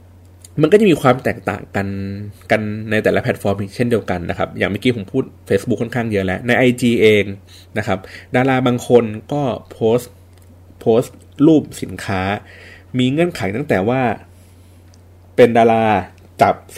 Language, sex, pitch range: Thai, male, 90-115 Hz